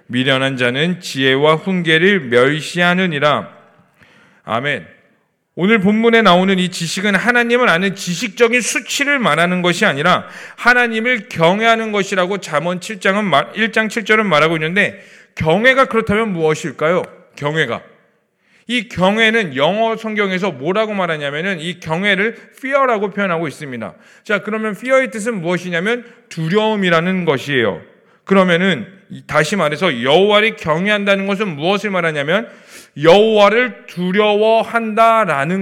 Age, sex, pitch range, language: 40-59, male, 180-230 Hz, Korean